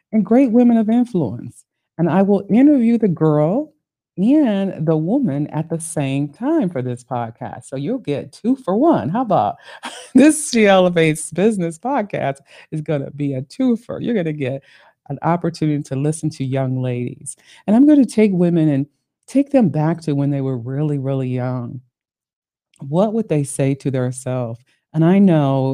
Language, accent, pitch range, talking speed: English, American, 130-175 Hz, 180 wpm